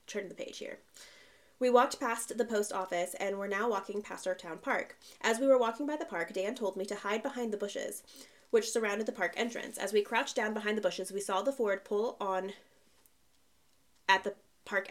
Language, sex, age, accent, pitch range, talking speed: English, female, 20-39, American, 195-235 Hz, 215 wpm